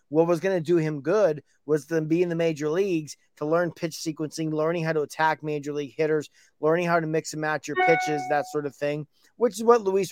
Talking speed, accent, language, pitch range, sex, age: 245 wpm, American, English, 135-160 Hz, male, 20-39